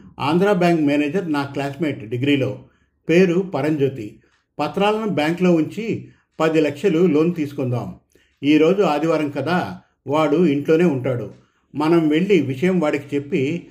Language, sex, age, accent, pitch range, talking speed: Telugu, male, 50-69, native, 135-170 Hz, 115 wpm